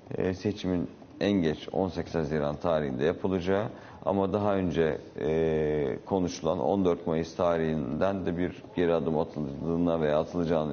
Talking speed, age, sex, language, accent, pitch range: 115 wpm, 50-69, male, Turkish, native, 80-95 Hz